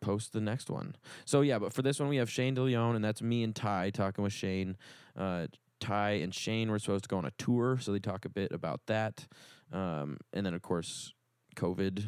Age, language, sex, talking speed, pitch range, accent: 20-39, English, male, 230 wpm, 95-110 Hz, American